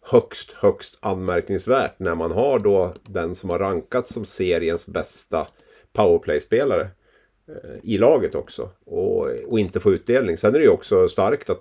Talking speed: 155 wpm